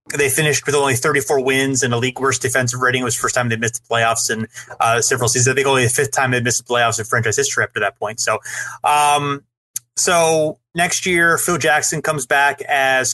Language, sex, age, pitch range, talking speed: English, male, 30-49, 125-155 Hz, 240 wpm